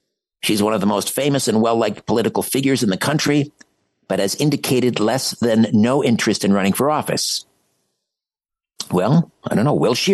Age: 60-79